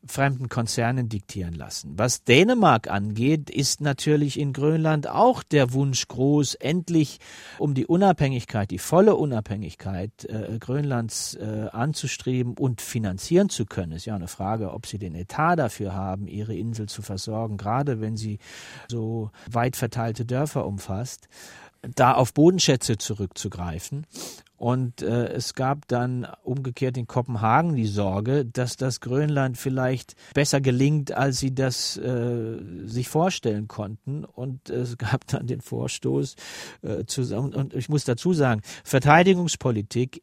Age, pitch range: 40-59, 110-140 Hz